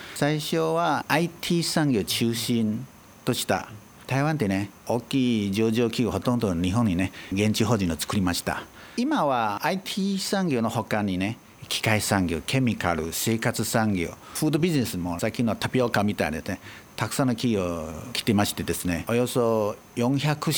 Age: 50-69